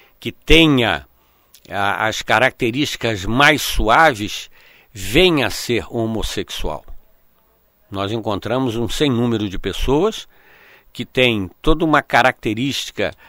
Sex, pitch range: male, 110-145 Hz